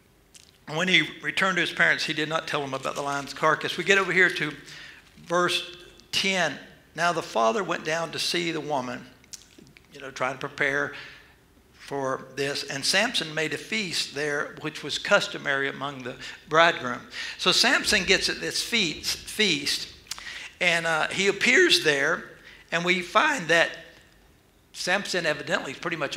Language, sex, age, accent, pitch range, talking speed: English, male, 60-79, American, 150-195 Hz, 165 wpm